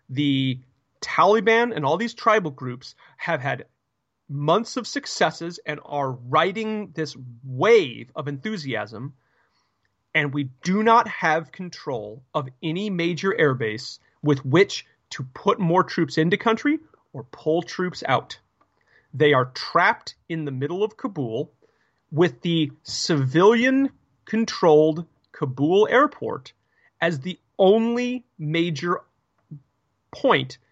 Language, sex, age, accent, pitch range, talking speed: English, male, 30-49, American, 145-220 Hz, 115 wpm